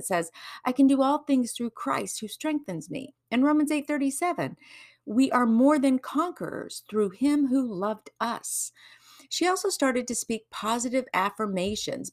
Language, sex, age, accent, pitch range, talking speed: English, female, 50-69, American, 185-270 Hz, 170 wpm